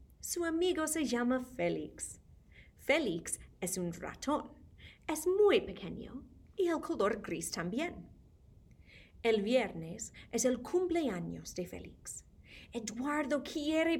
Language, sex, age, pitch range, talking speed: English, female, 30-49, 205-305 Hz, 110 wpm